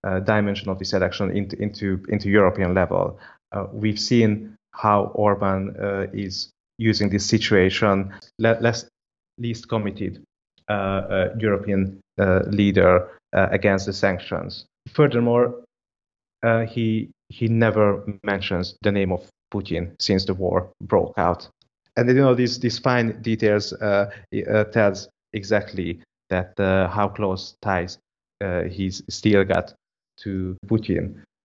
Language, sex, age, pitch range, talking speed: English, male, 30-49, 95-110 Hz, 135 wpm